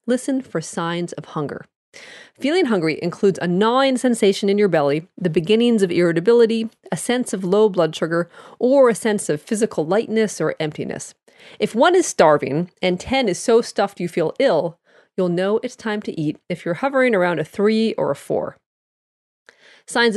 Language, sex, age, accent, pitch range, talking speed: English, female, 40-59, American, 175-235 Hz, 180 wpm